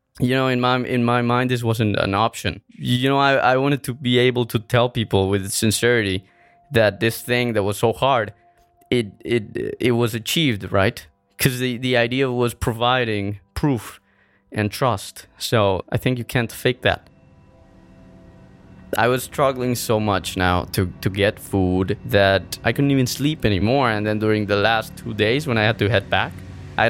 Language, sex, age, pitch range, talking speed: French, male, 20-39, 100-125 Hz, 185 wpm